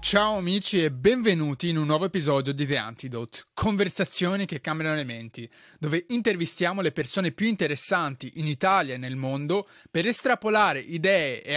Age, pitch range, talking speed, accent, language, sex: 20-39, 150-205 Hz, 160 wpm, native, Italian, male